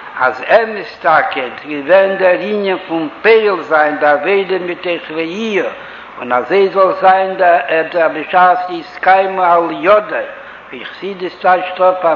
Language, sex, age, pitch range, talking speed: Hebrew, male, 60-79, 170-205 Hz, 130 wpm